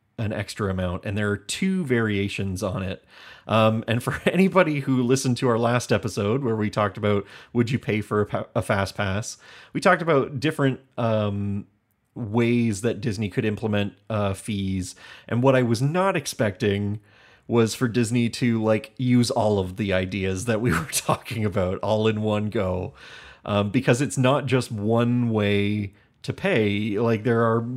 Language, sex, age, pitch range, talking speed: English, male, 30-49, 105-125 Hz, 175 wpm